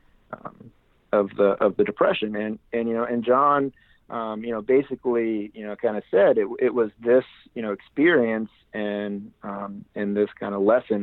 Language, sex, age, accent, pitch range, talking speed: English, male, 40-59, American, 105-115 Hz, 190 wpm